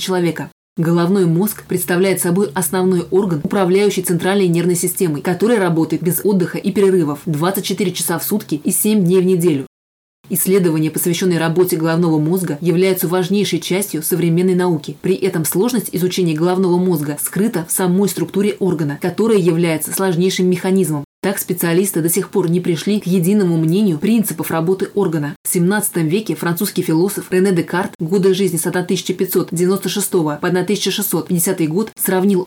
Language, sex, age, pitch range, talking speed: Russian, female, 20-39, 170-190 Hz, 145 wpm